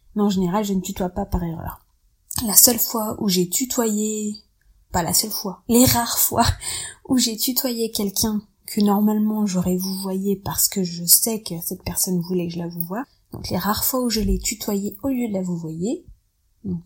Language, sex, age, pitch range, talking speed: French, female, 20-39, 180-230 Hz, 210 wpm